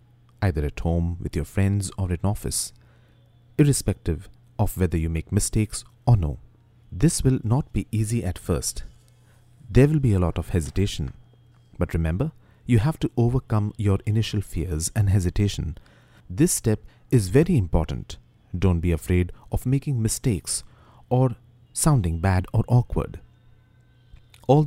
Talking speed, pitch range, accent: 145 wpm, 90-120 Hz, Indian